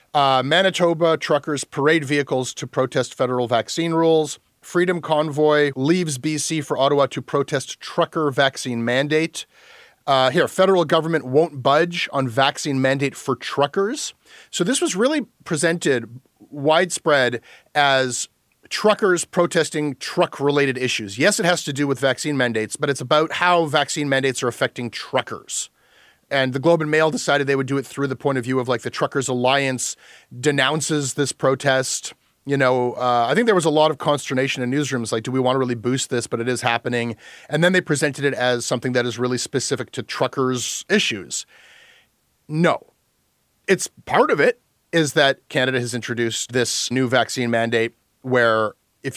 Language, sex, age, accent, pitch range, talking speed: English, male, 30-49, American, 125-160 Hz, 170 wpm